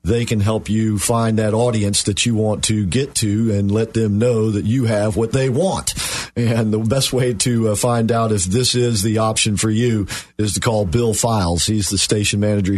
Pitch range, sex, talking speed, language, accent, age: 100-115 Hz, male, 215 wpm, English, American, 50-69